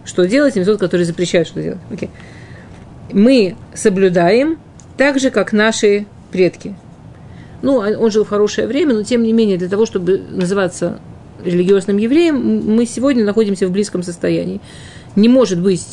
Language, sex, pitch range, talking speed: Russian, female, 180-240 Hz, 150 wpm